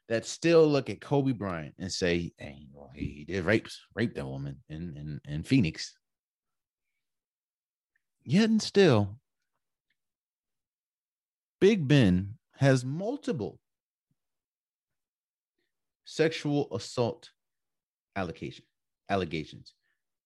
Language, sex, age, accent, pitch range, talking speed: English, male, 30-49, American, 95-145 Hz, 85 wpm